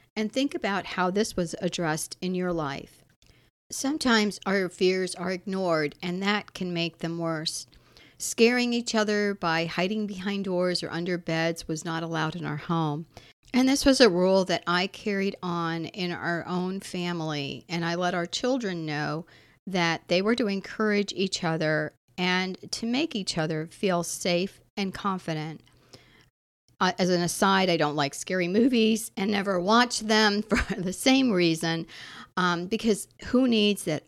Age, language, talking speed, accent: 50-69, English, 165 wpm, American